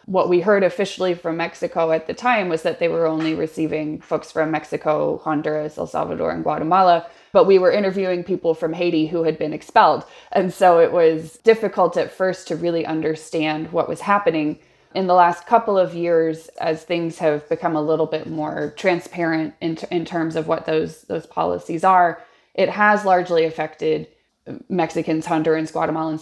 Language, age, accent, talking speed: English, 20-39, American, 180 wpm